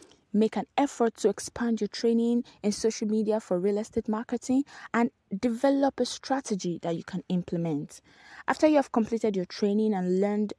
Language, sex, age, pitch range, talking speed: English, female, 20-39, 190-235 Hz, 170 wpm